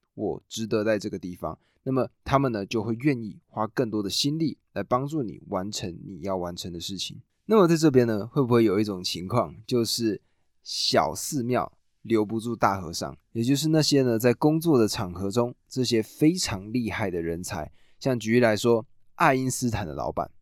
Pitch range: 100-130 Hz